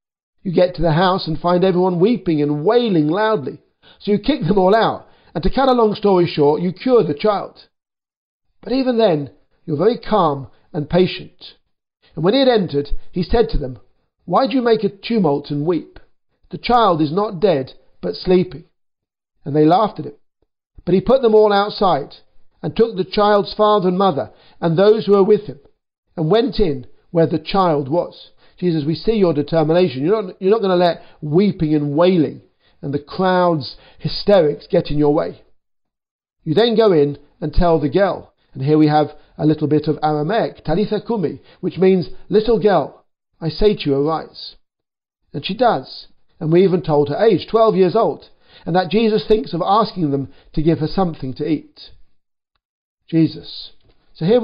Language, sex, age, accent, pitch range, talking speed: English, male, 50-69, British, 155-210 Hz, 185 wpm